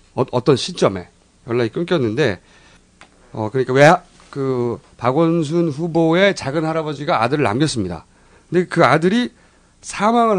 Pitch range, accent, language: 120-195 Hz, native, Korean